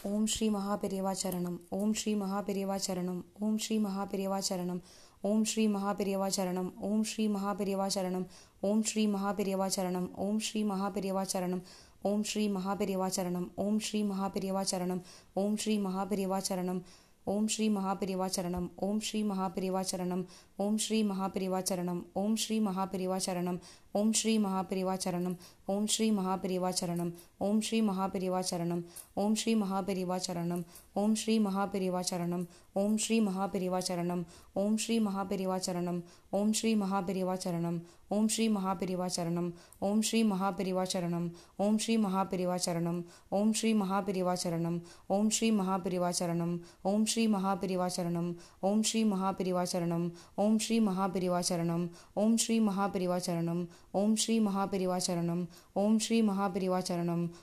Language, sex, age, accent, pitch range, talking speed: Tamil, female, 20-39, native, 180-205 Hz, 100 wpm